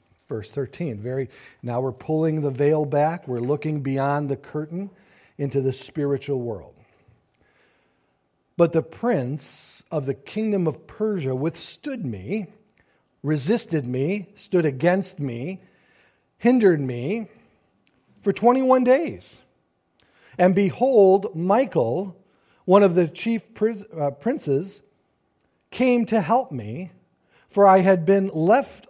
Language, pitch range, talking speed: English, 150-215 Hz, 115 wpm